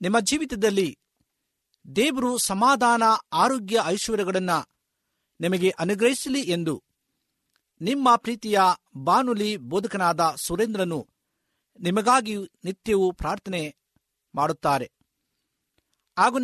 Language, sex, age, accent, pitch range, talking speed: Kannada, male, 50-69, native, 190-250 Hz, 70 wpm